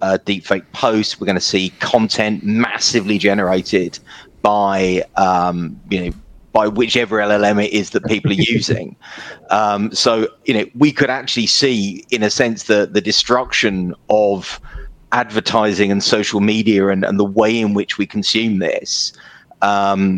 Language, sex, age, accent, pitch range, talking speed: English, male, 30-49, British, 100-130 Hz, 155 wpm